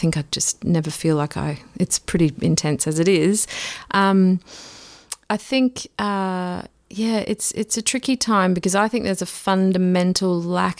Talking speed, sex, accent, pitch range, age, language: 165 wpm, female, Australian, 160-195 Hz, 30-49, English